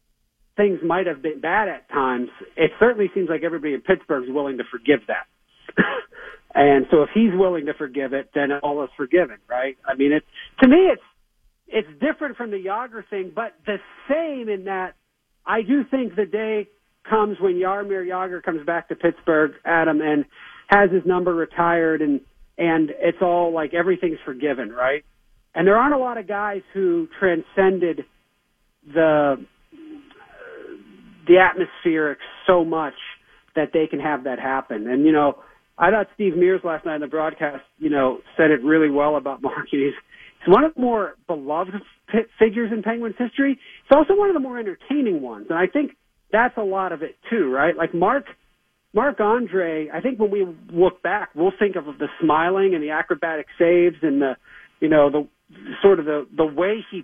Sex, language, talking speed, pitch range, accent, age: male, English, 185 wpm, 155-205 Hz, American, 50-69